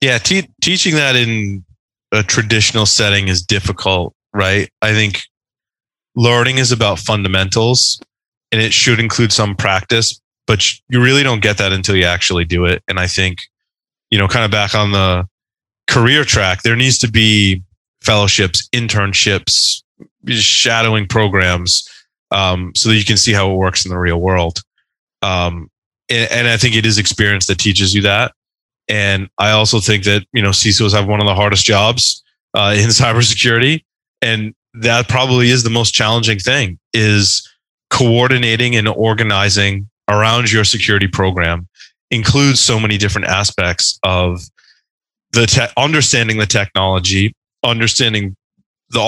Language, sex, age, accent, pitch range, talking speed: English, male, 20-39, American, 95-120 Hz, 155 wpm